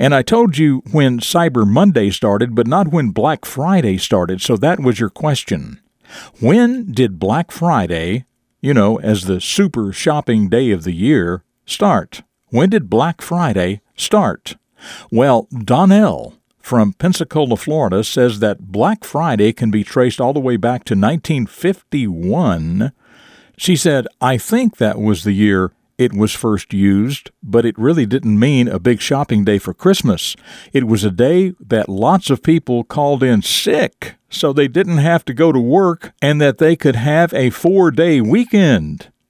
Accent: American